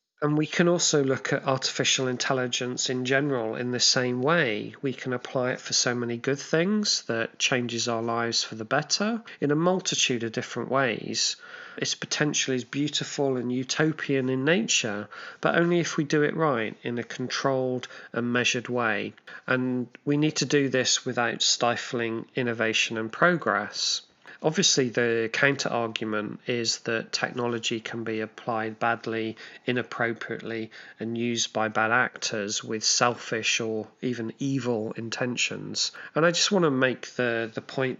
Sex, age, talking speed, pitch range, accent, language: male, 40-59, 155 wpm, 115-140 Hz, British, English